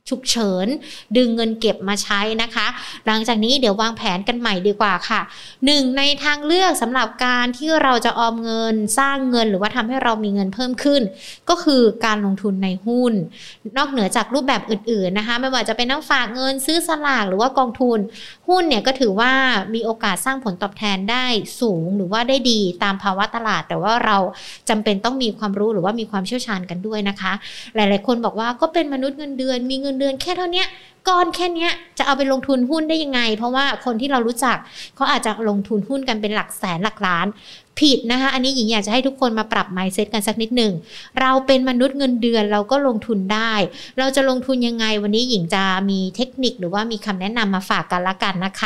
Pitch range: 210-265 Hz